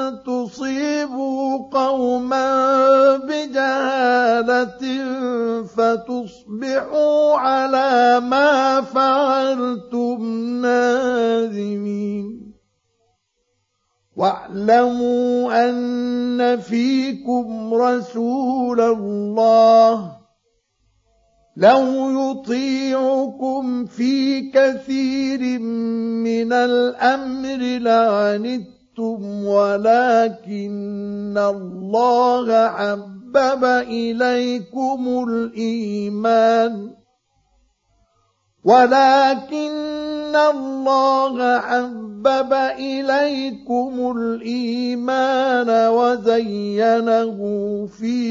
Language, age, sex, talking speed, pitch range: Arabic, 50-69, male, 35 wpm, 225-265 Hz